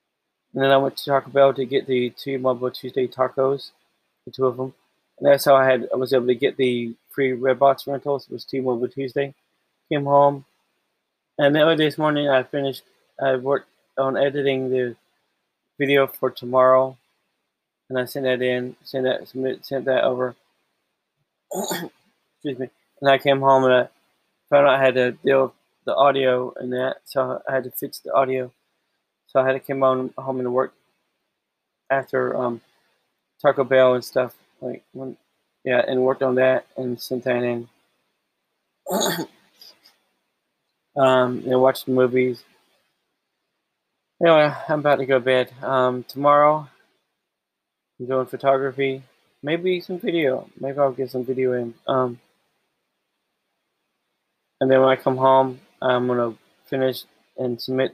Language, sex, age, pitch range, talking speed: English, male, 20-39, 125-135 Hz, 160 wpm